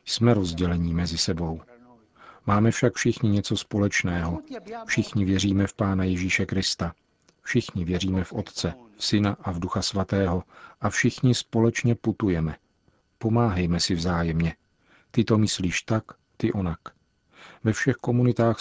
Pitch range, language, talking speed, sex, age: 90-110 Hz, Czech, 130 wpm, male, 40-59